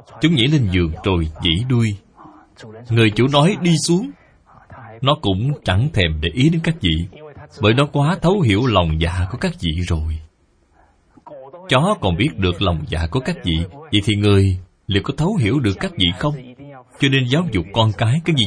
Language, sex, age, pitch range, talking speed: Vietnamese, male, 20-39, 90-145 Hz, 195 wpm